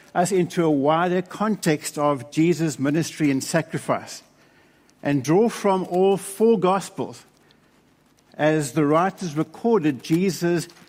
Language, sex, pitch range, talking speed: English, male, 150-200 Hz, 115 wpm